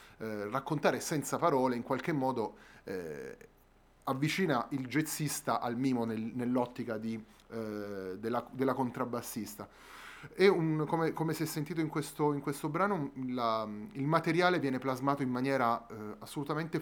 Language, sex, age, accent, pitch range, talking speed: Italian, male, 30-49, native, 115-150 Hz, 140 wpm